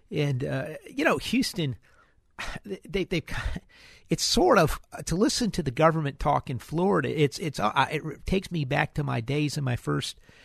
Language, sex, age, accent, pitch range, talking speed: English, male, 50-69, American, 120-150 Hz, 180 wpm